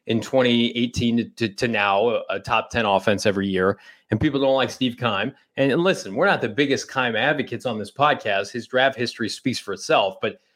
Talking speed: 205 wpm